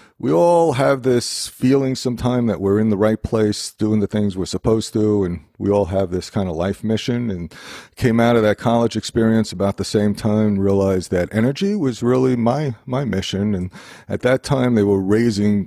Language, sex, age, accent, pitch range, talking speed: English, male, 40-59, American, 90-115 Hz, 205 wpm